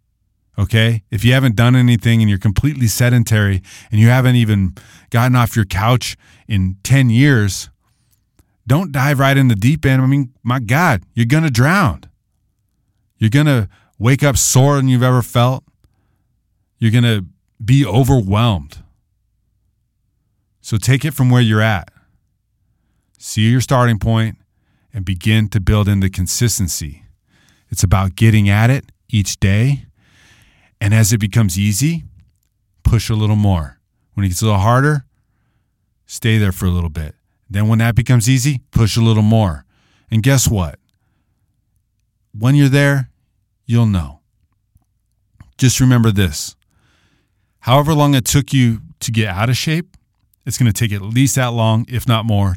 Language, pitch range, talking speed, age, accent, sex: English, 100-125 Hz, 160 wpm, 30-49, American, male